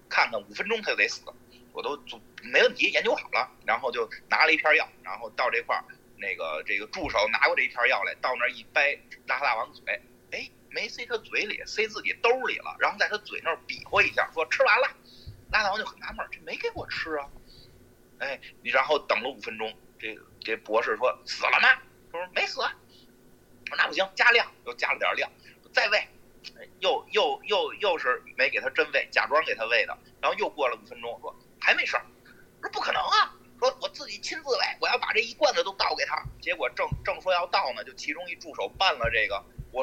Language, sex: Chinese, male